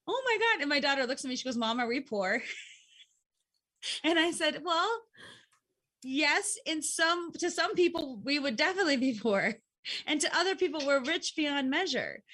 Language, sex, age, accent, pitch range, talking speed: English, female, 30-49, American, 235-315 Hz, 185 wpm